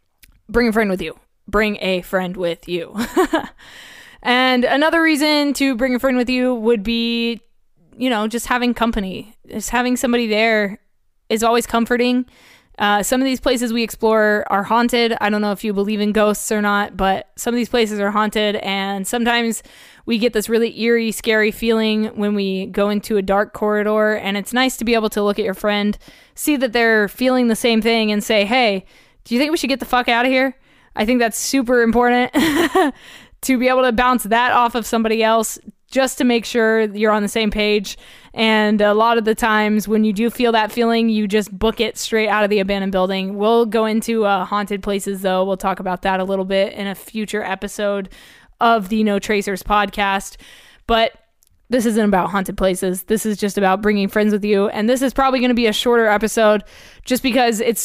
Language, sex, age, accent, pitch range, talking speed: English, female, 20-39, American, 205-240 Hz, 210 wpm